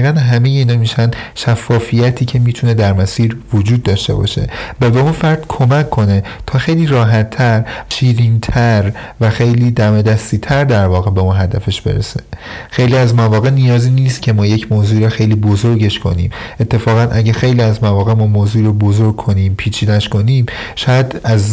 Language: Persian